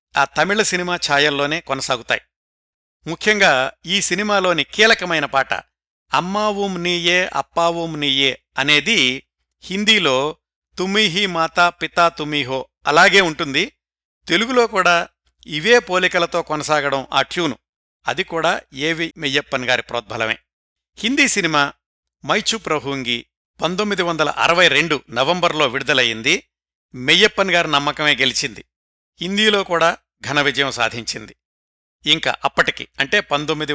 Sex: male